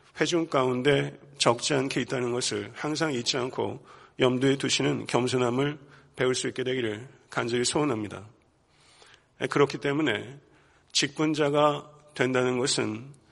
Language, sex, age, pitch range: Korean, male, 40-59, 120-145 Hz